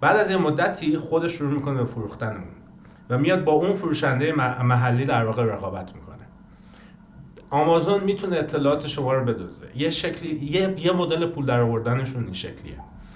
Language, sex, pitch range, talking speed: English, male, 120-160 Hz, 155 wpm